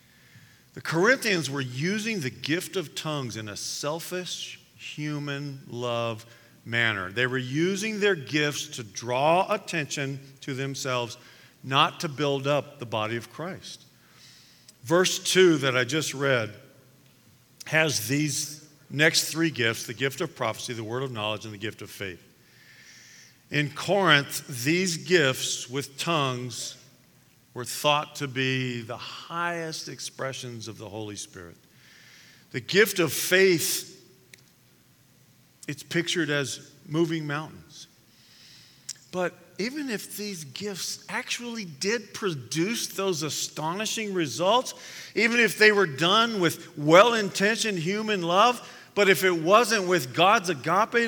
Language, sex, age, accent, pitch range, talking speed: English, male, 50-69, American, 130-185 Hz, 125 wpm